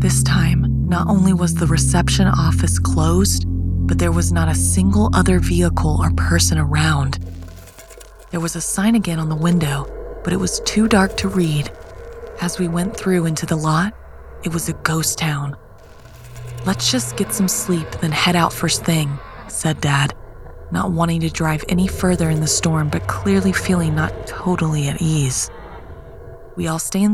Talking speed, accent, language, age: 175 wpm, American, English, 20-39